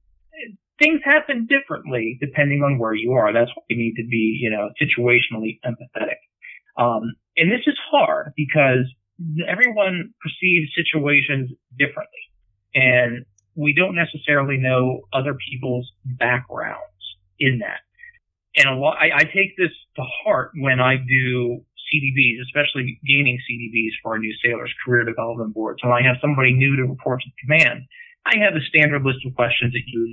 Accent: American